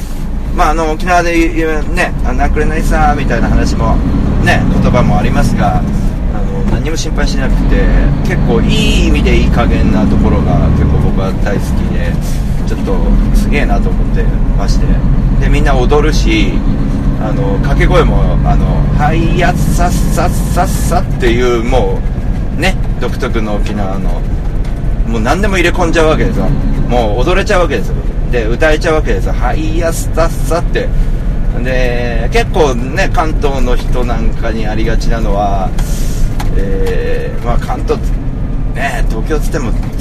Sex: male